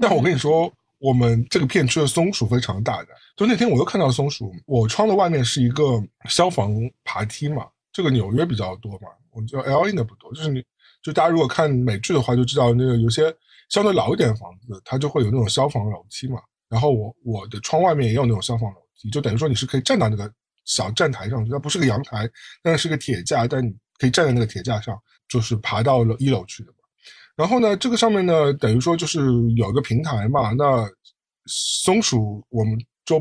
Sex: male